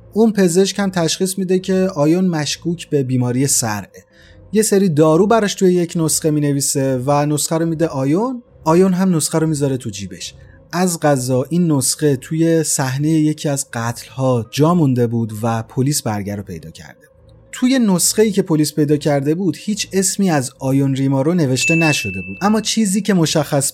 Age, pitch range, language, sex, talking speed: 30-49, 130-180 Hz, Persian, male, 180 wpm